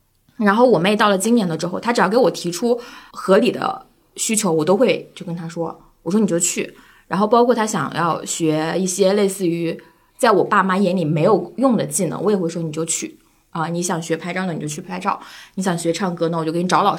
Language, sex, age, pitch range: Chinese, female, 20-39, 170-210 Hz